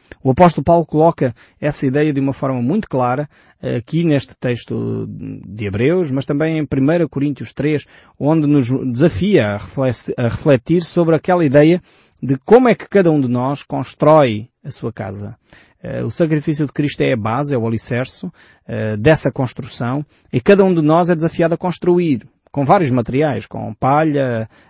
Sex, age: male, 20-39